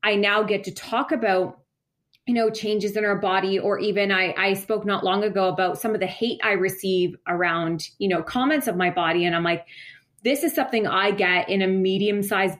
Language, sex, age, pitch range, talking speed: English, female, 20-39, 185-215 Hz, 220 wpm